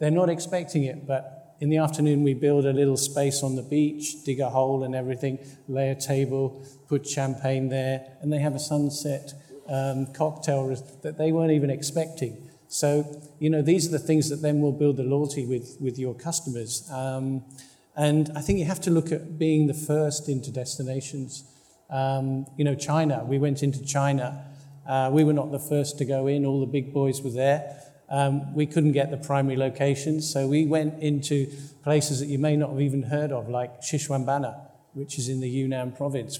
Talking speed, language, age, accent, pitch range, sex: 200 wpm, English, 50-69, British, 135-150 Hz, male